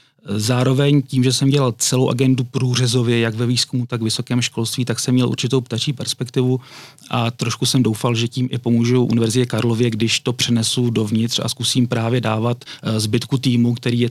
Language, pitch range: Czech, 115-130 Hz